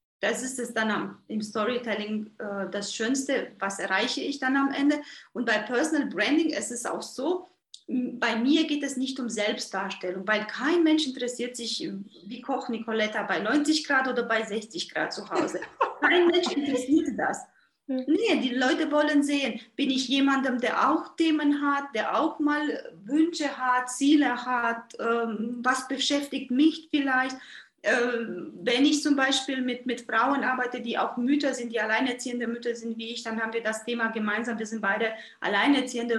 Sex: female